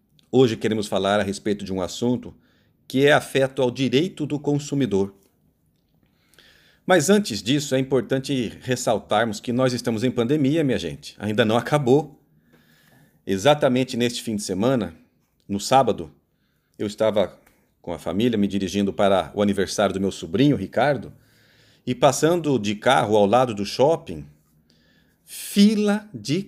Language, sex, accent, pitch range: Portuguese, male, Brazilian, 105-145 Hz